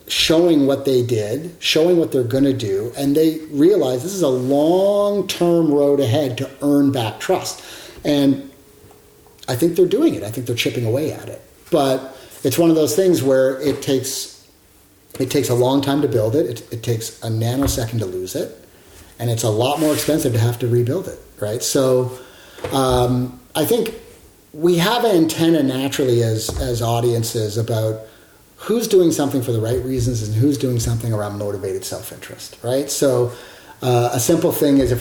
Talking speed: 185 wpm